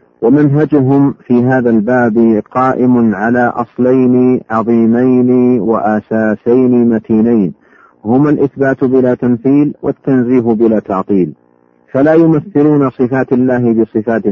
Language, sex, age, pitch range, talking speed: Arabic, male, 50-69, 110-130 Hz, 90 wpm